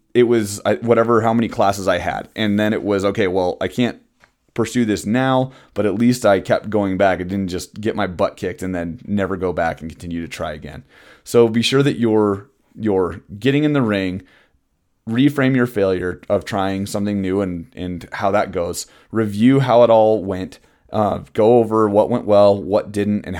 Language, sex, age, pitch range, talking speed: English, male, 30-49, 95-115 Hz, 205 wpm